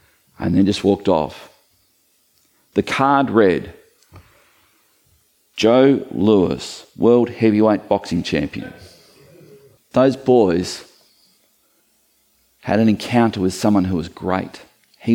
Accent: Australian